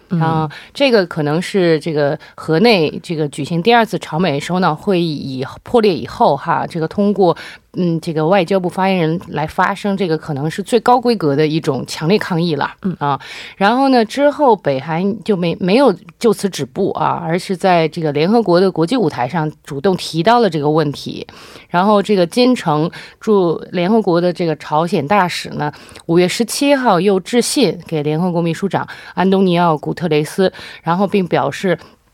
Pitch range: 155-200 Hz